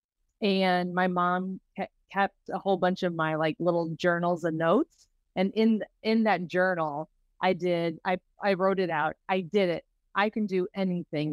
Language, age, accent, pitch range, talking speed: English, 30-49, American, 180-220 Hz, 175 wpm